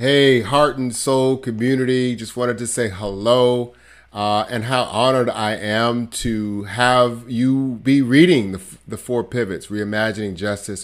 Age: 30-49